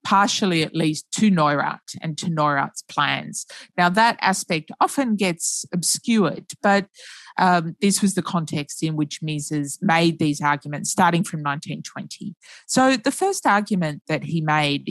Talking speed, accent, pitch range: 150 wpm, Australian, 155-195 Hz